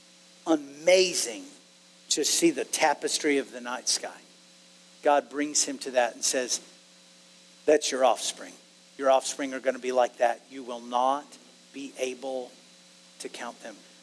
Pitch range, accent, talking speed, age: 125-170 Hz, American, 150 wpm, 50-69